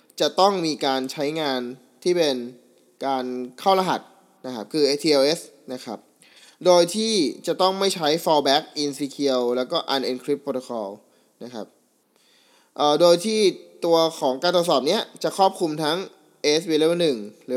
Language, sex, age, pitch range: Thai, male, 20-39, 135-175 Hz